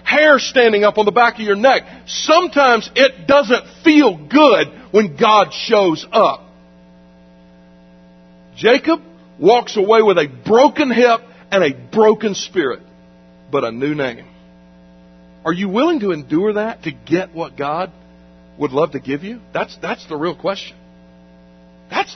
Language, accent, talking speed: English, American, 145 wpm